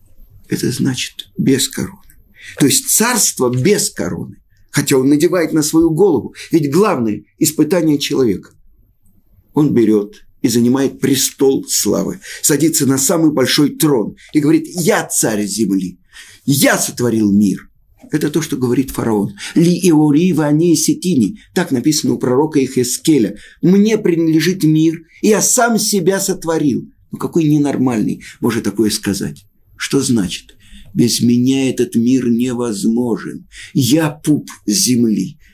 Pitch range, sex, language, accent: 110-160 Hz, male, Russian, native